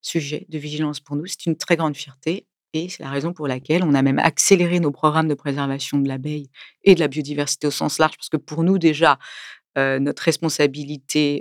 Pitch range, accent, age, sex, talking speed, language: 140-165 Hz, French, 40-59, female, 215 wpm, French